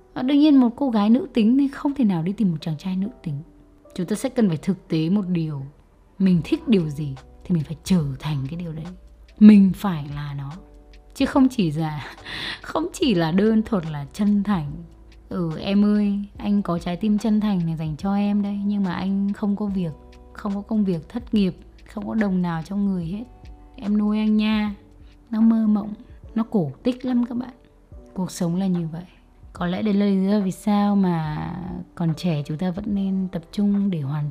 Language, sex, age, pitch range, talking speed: Vietnamese, female, 20-39, 170-215 Hz, 215 wpm